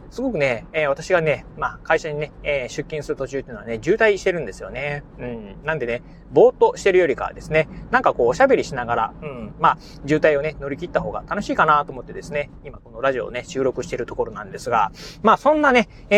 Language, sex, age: Japanese, male, 30-49